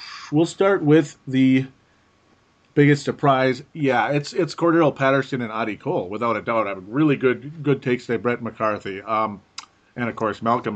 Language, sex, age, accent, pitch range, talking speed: English, male, 40-59, American, 115-150 Hz, 165 wpm